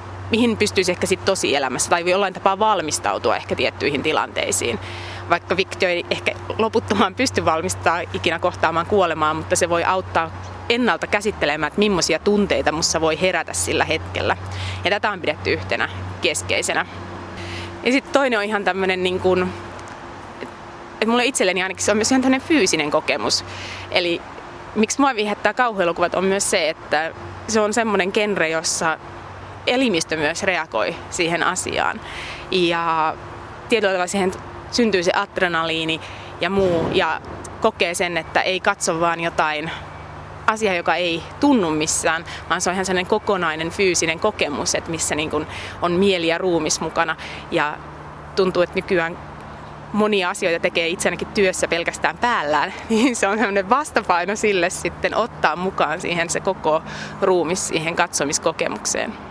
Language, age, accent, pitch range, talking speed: Finnish, 30-49, native, 160-205 Hz, 140 wpm